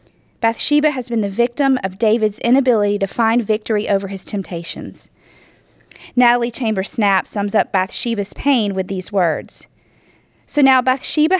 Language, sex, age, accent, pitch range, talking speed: English, female, 40-59, American, 195-245 Hz, 135 wpm